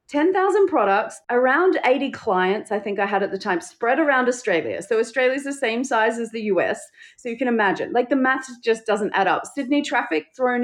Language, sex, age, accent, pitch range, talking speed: English, female, 30-49, Australian, 190-285 Hz, 210 wpm